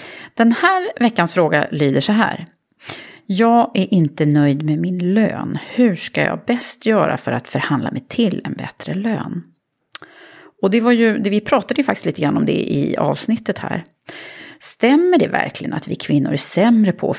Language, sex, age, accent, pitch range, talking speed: Swedish, female, 30-49, native, 160-230 Hz, 185 wpm